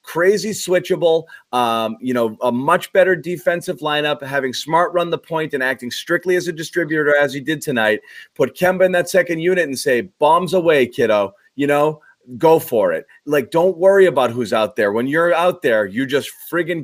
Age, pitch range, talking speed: 30-49, 130-180 Hz, 195 wpm